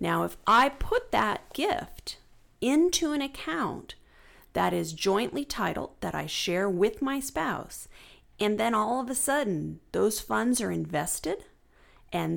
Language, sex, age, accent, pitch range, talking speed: English, female, 40-59, American, 170-260 Hz, 145 wpm